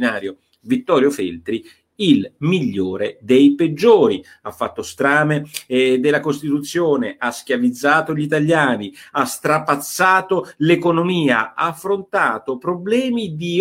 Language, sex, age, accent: Italian, male, 50-69, native